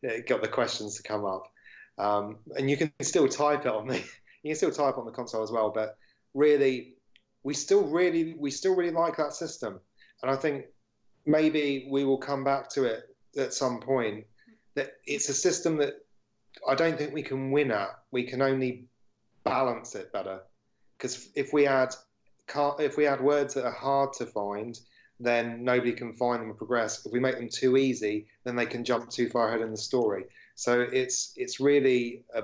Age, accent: 30-49, British